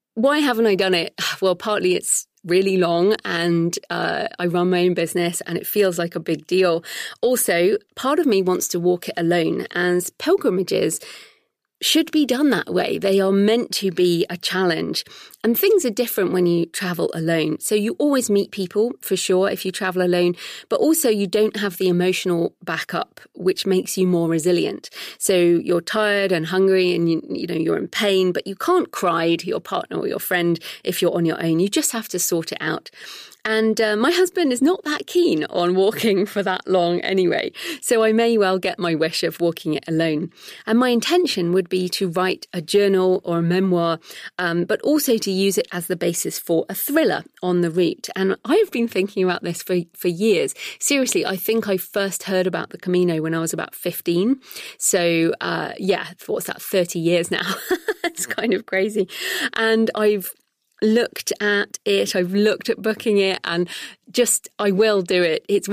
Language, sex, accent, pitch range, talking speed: English, female, British, 175-220 Hz, 200 wpm